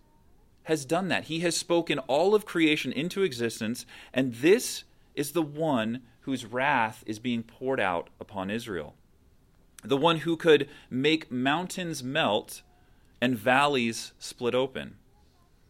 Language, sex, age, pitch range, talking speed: English, male, 30-49, 115-170 Hz, 135 wpm